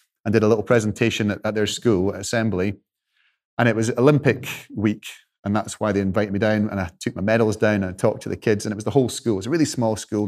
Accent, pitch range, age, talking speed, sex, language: British, 105-135 Hz, 30-49, 270 wpm, male, English